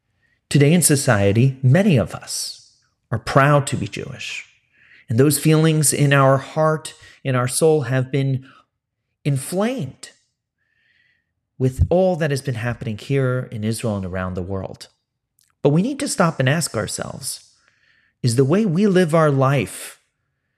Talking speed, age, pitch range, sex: 150 wpm, 30-49, 115-155 Hz, male